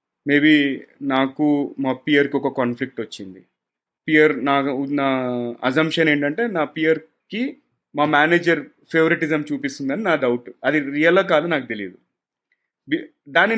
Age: 30-49